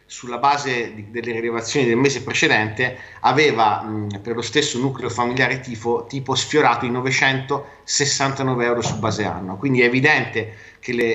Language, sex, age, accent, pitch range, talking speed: Italian, male, 30-49, native, 115-145 Hz, 150 wpm